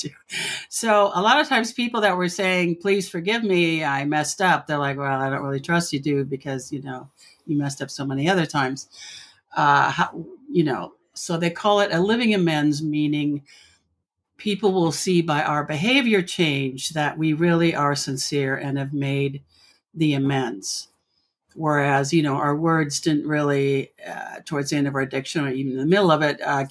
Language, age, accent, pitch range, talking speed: English, 60-79, American, 135-165 Hz, 190 wpm